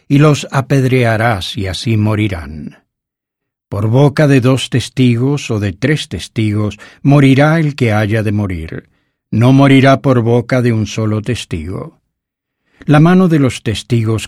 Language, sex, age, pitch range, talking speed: English, male, 60-79, 110-135 Hz, 145 wpm